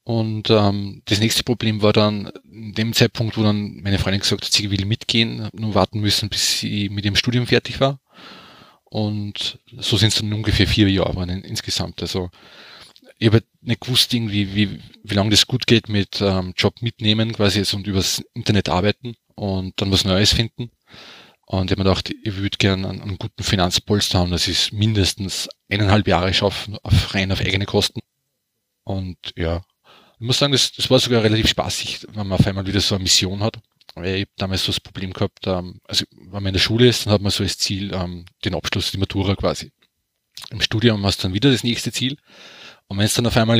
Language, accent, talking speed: German, Austrian, 210 wpm